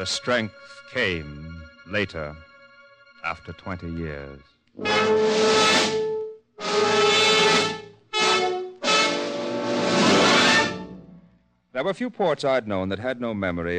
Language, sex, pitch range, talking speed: English, male, 90-120 Hz, 75 wpm